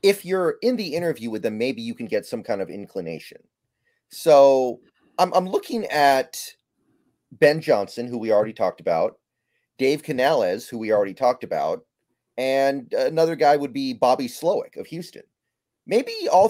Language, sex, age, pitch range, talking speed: English, male, 30-49, 120-170 Hz, 165 wpm